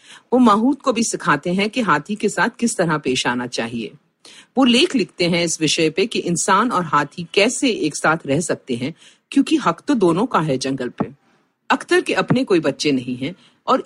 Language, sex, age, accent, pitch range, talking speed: Hindi, female, 50-69, native, 155-255 Hz, 210 wpm